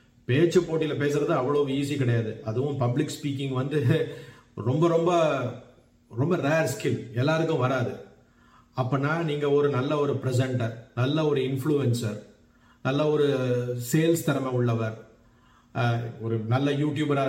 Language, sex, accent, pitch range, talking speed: Tamil, male, native, 120-155 Hz, 120 wpm